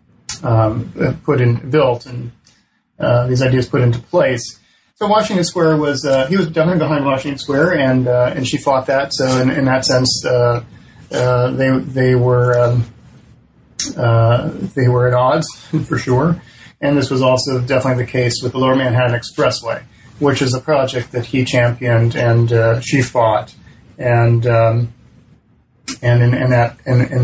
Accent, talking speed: American, 170 wpm